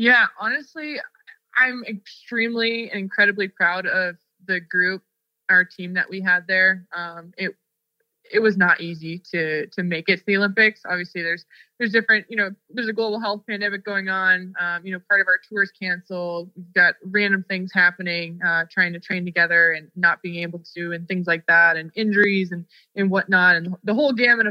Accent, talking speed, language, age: American, 190 wpm, English, 20-39